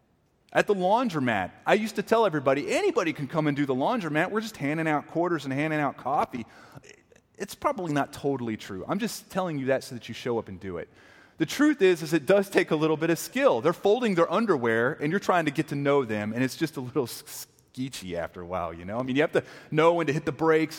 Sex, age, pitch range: male, 30-49, 115-190 Hz